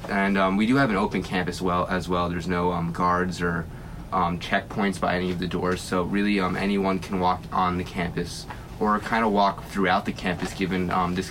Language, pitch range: English, 85-95 Hz